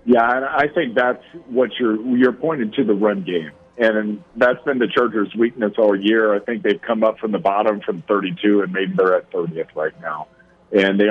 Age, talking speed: 50-69, 210 wpm